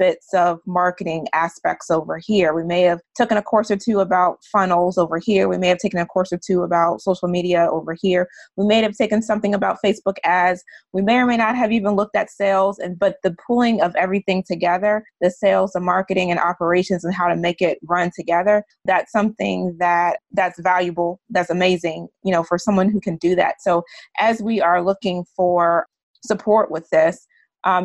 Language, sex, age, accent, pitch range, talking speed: English, female, 20-39, American, 175-205 Hz, 205 wpm